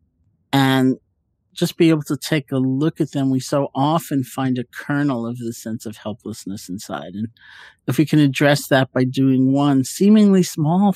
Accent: American